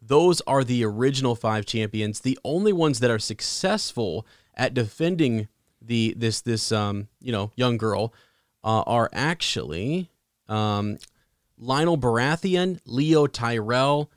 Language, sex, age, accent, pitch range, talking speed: English, male, 30-49, American, 105-125 Hz, 125 wpm